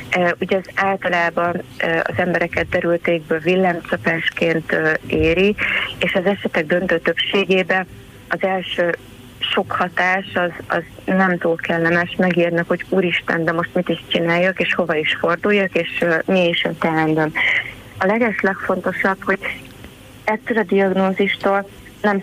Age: 30-49